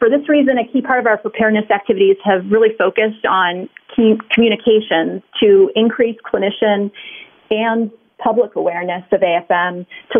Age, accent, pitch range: 30-49, American, 185-230 Hz